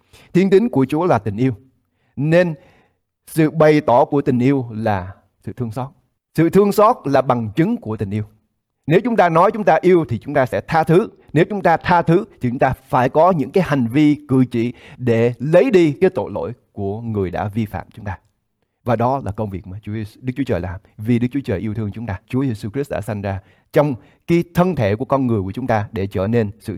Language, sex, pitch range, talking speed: English, male, 110-160 Hz, 240 wpm